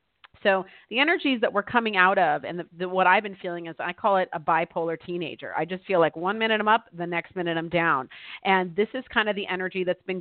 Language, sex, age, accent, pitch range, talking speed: English, female, 40-59, American, 175-215 Hz, 245 wpm